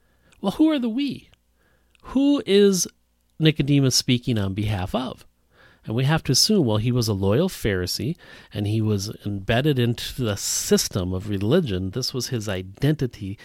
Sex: male